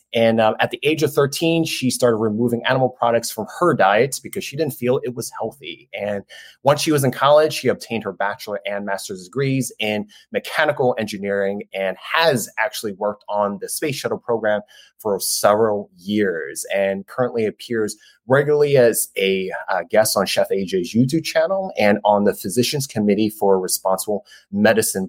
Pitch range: 100-130 Hz